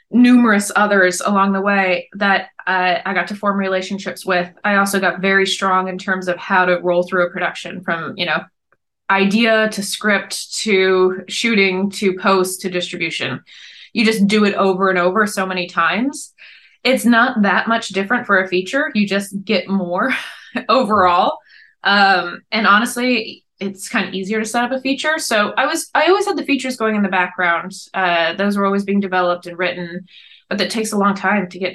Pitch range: 180-210 Hz